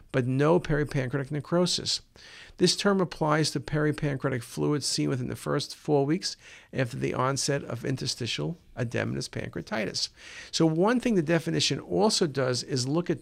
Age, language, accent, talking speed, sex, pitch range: 50-69, English, American, 150 wpm, male, 130-165 Hz